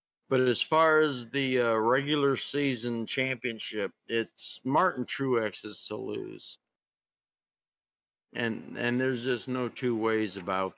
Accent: American